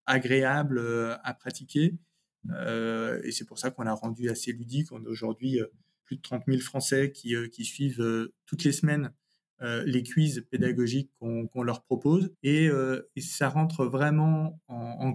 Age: 20-39